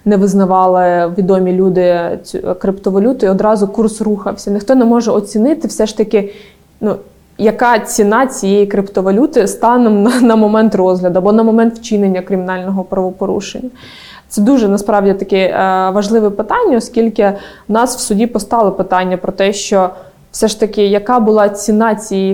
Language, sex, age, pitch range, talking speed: Ukrainian, female, 20-39, 195-225 Hz, 150 wpm